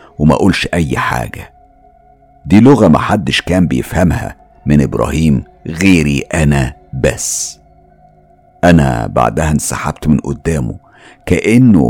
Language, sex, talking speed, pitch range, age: Arabic, male, 105 wpm, 70-90 Hz, 50-69